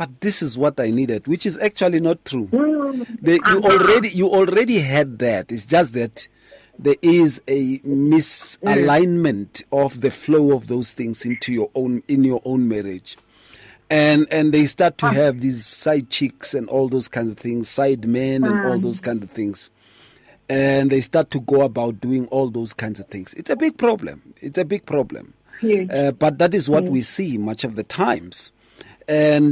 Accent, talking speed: South African, 190 wpm